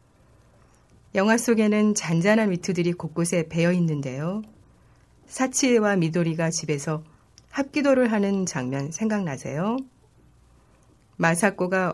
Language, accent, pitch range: Korean, native, 155-210 Hz